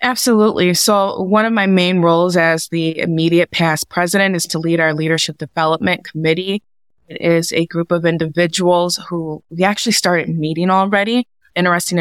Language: English